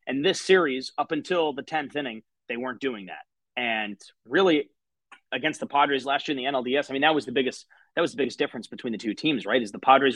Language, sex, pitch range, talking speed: English, male, 125-160 Hz, 240 wpm